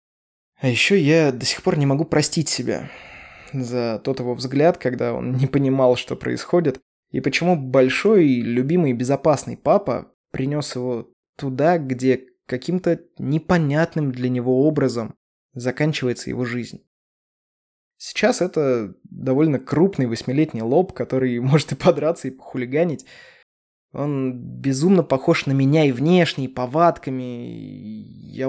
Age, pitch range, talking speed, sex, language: 20-39, 125-155 Hz, 125 wpm, male, Russian